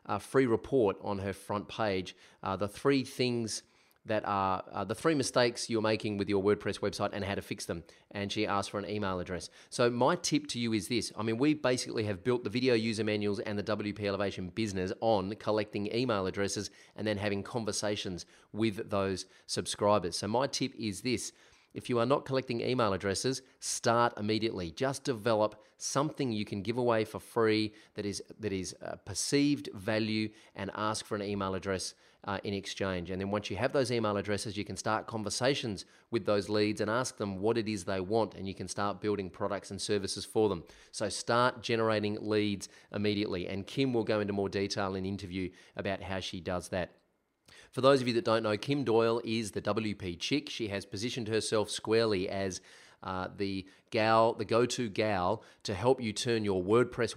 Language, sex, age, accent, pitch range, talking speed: English, male, 30-49, Australian, 100-115 Hz, 200 wpm